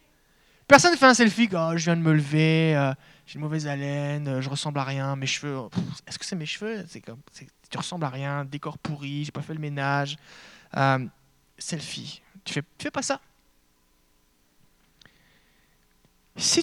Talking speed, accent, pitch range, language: 190 wpm, French, 130-190 Hz, French